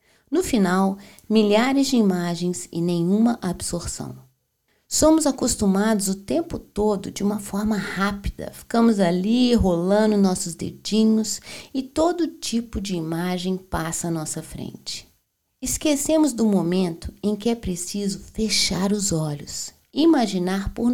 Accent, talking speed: Brazilian, 125 wpm